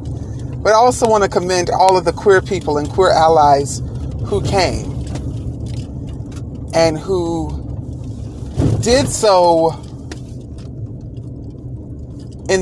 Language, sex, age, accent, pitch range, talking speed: English, male, 40-59, American, 135-195 Hz, 100 wpm